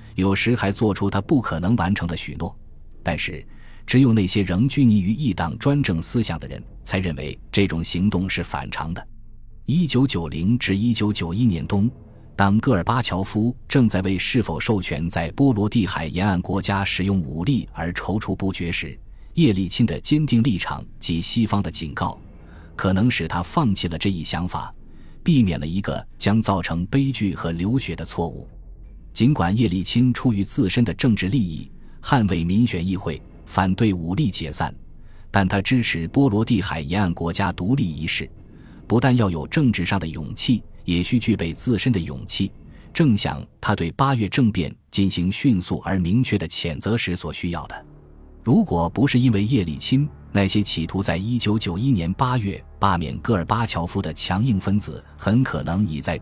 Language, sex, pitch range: Chinese, male, 85-115 Hz